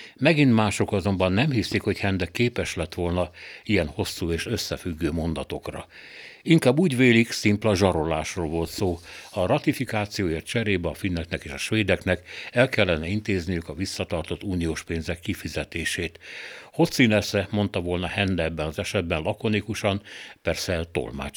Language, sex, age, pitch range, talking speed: Hungarian, male, 60-79, 90-115 Hz, 140 wpm